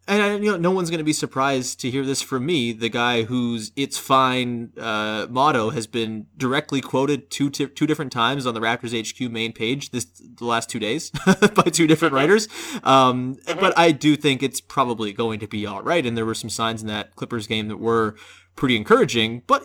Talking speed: 215 wpm